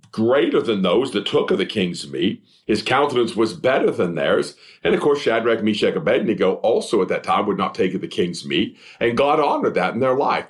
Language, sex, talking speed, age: English, male, 225 wpm, 50-69